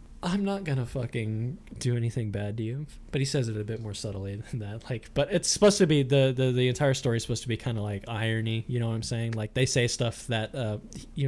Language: English